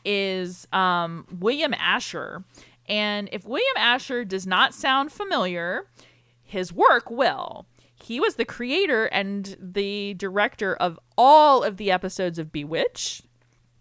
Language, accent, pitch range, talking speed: English, American, 180-240 Hz, 125 wpm